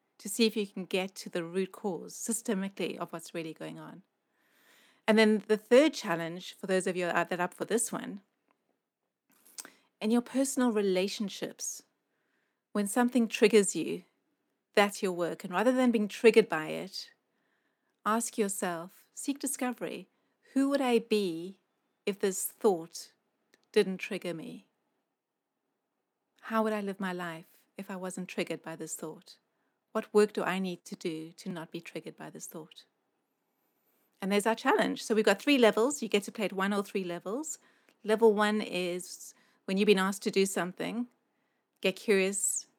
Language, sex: English, female